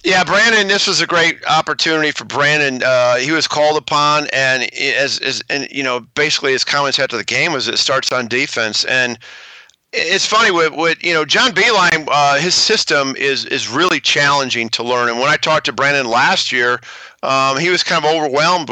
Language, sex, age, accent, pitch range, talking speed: English, male, 50-69, American, 130-170 Hz, 200 wpm